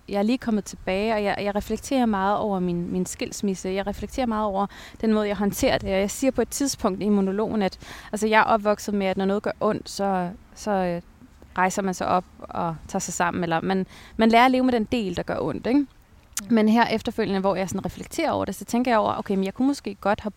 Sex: female